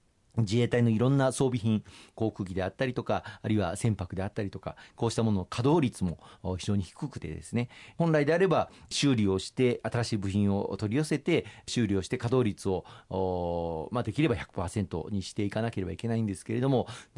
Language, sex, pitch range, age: Japanese, male, 95-125 Hz, 40-59